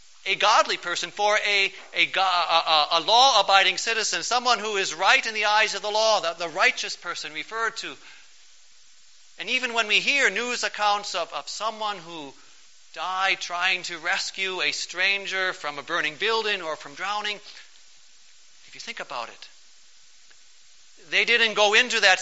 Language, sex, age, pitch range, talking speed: English, male, 40-59, 165-210 Hz, 165 wpm